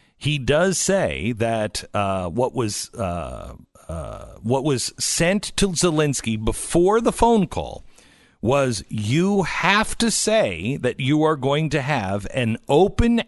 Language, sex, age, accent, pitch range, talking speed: English, male, 50-69, American, 110-155 Hz, 140 wpm